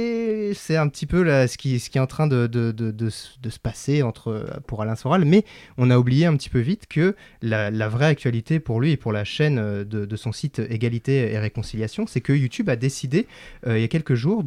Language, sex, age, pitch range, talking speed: French, male, 20-39, 110-150 Hz, 250 wpm